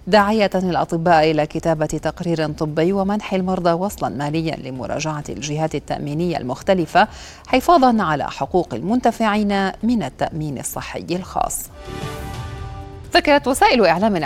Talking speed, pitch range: 105 wpm, 150-175 Hz